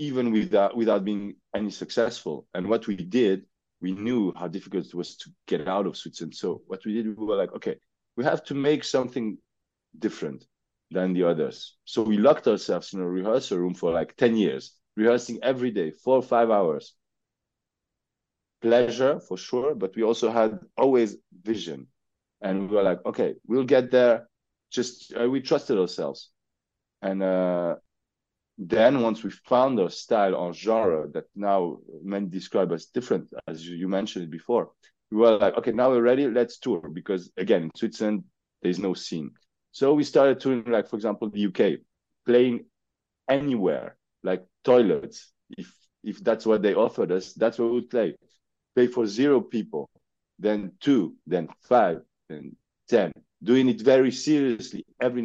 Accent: French